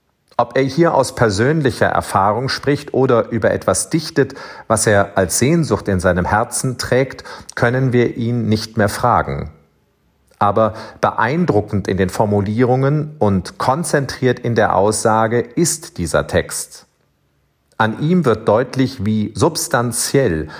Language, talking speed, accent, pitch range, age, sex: German, 130 wpm, German, 105-135 Hz, 40-59, male